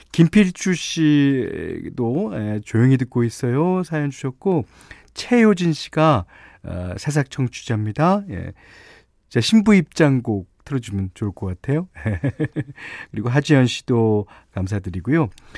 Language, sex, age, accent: Korean, male, 40-59, native